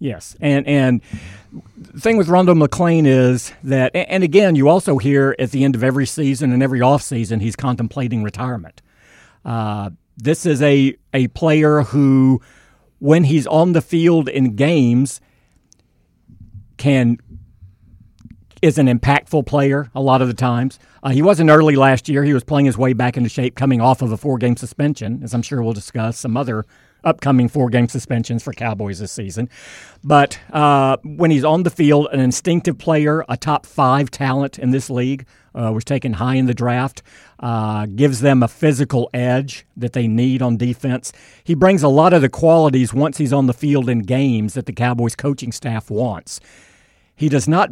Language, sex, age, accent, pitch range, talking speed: English, male, 50-69, American, 120-145 Hz, 180 wpm